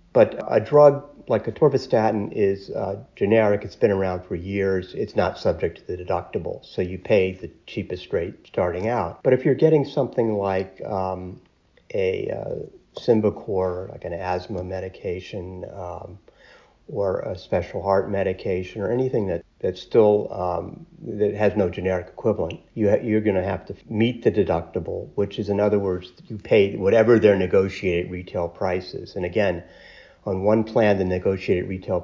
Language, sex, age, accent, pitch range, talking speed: English, male, 50-69, American, 95-110 Hz, 165 wpm